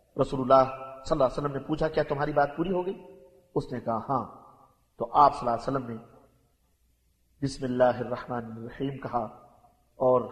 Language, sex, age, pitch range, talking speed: Arabic, male, 50-69, 130-165 Hz, 175 wpm